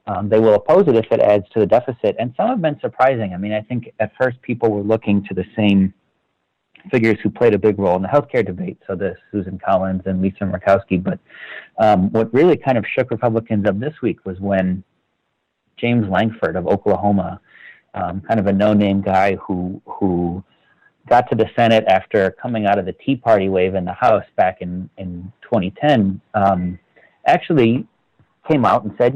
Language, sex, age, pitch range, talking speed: English, male, 40-59, 95-115 Hz, 195 wpm